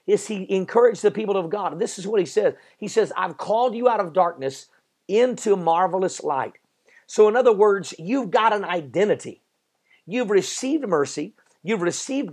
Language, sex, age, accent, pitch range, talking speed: English, male, 50-69, American, 165-220 Hz, 175 wpm